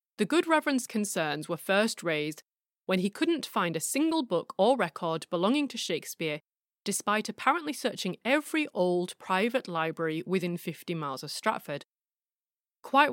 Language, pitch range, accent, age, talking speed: English, 175-235 Hz, British, 30-49, 145 wpm